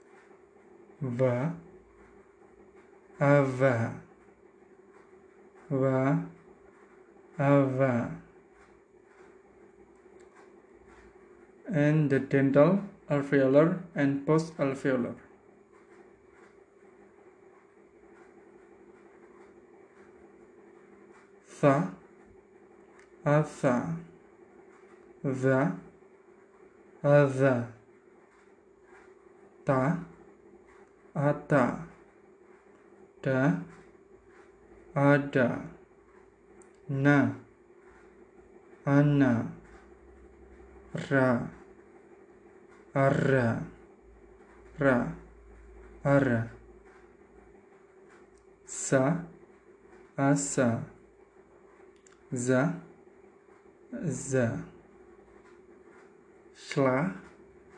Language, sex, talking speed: English, male, 30 wpm